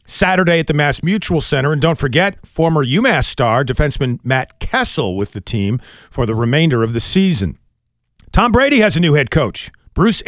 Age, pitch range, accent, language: 40-59, 125-185 Hz, American, English